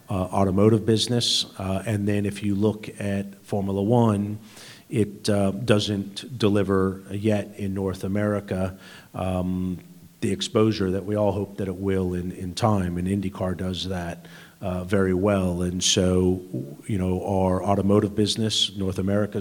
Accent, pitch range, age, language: American, 95-105 Hz, 40-59, English